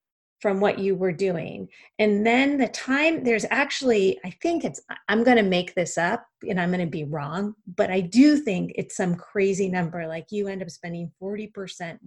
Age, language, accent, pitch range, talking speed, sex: 30-49, English, American, 175-220 Hz, 190 wpm, female